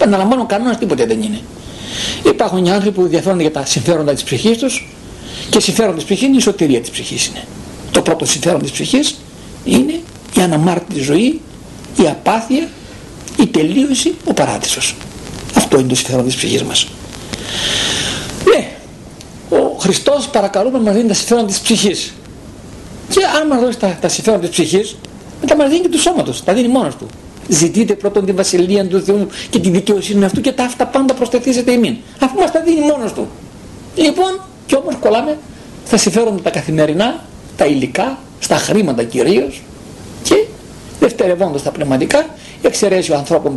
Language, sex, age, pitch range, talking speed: Greek, male, 60-79, 180-265 Hz, 165 wpm